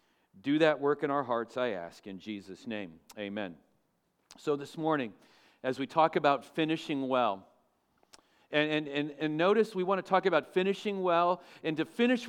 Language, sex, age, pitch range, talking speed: English, male, 40-59, 140-185 Hz, 175 wpm